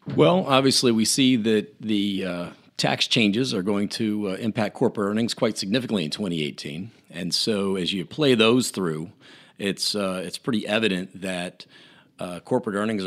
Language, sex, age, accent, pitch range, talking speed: English, male, 40-59, American, 90-115 Hz, 165 wpm